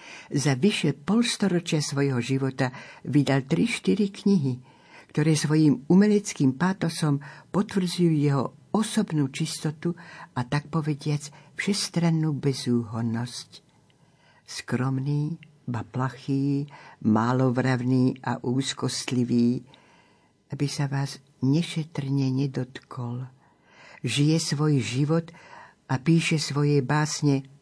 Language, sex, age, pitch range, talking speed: Slovak, female, 60-79, 130-160 Hz, 85 wpm